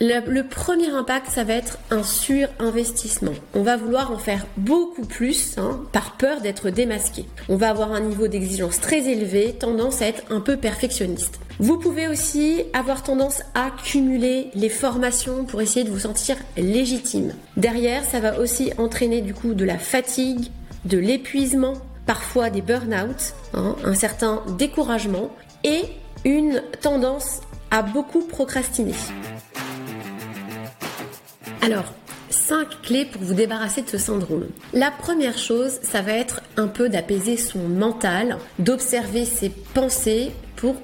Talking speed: 145 wpm